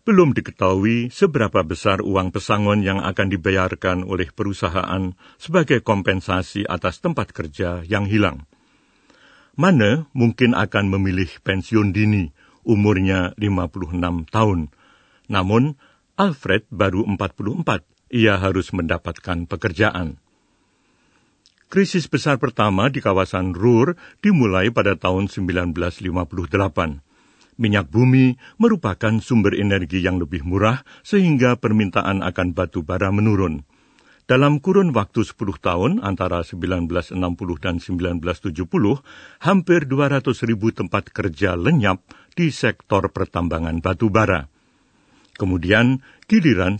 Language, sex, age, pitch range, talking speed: Indonesian, male, 60-79, 90-120 Hz, 105 wpm